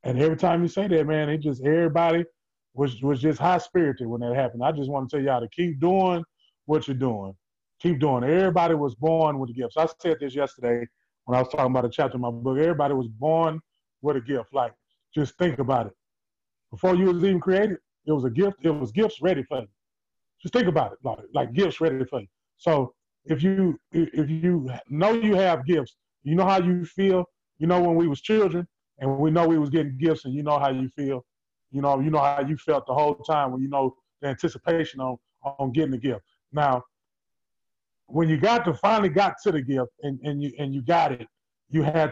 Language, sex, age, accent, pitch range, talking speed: English, male, 30-49, American, 135-170 Hz, 225 wpm